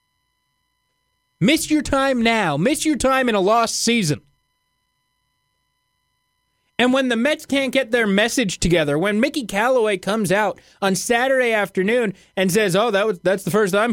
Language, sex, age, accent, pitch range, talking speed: English, male, 20-39, American, 145-235 Hz, 160 wpm